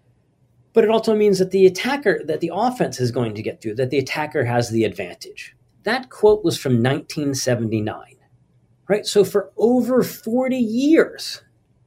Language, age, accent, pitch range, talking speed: English, 40-59, American, 125-190 Hz, 160 wpm